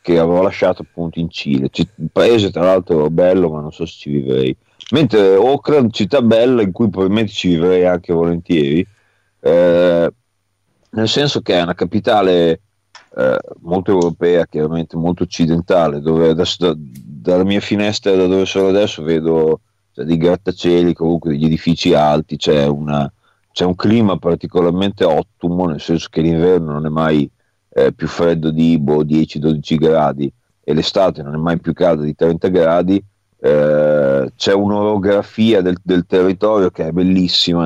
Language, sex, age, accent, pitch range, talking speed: Italian, male, 30-49, native, 80-95 Hz, 160 wpm